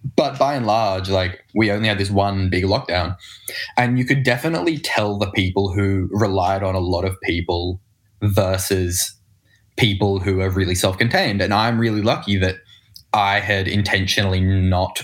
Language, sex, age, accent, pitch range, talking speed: English, male, 10-29, Australian, 95-115 Hz, 170 wpm